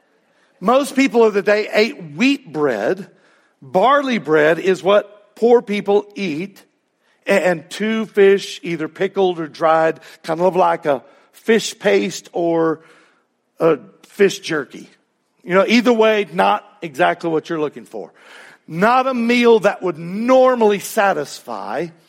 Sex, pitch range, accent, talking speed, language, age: male, 160-200 Hz, American, 135 wpm, English, 50-69